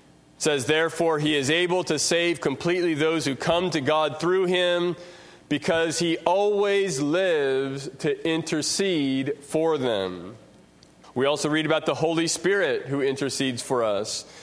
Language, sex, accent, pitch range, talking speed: English, male, American, 140-175 Hz, 145 wpm